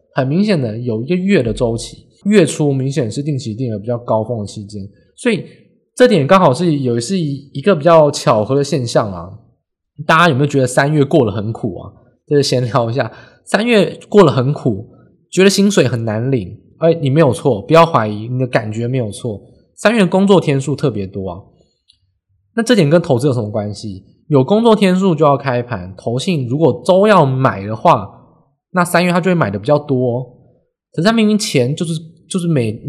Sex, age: male, 20-39